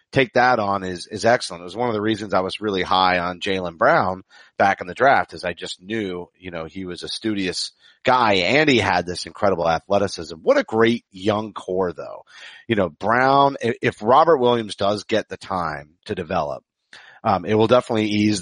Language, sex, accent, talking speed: English, male, American, 205 wpm